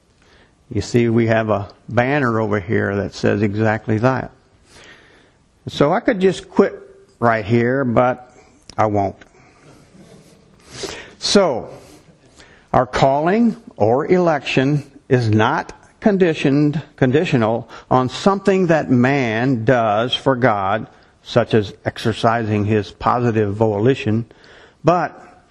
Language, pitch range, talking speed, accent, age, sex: English, 110-145 Hz, 105 wpm, American, 50-69, male